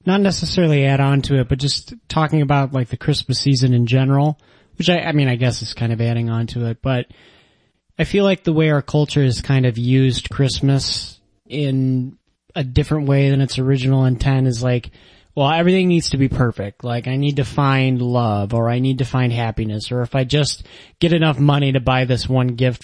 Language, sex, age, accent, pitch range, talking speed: English, male, 30-49, American, 120-140 Hz, 215 wpm